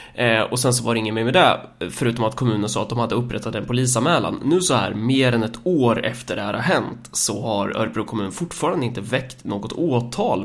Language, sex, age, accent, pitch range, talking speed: Swedish, male, 20-39, native, 105-130 Hz, 230 wpm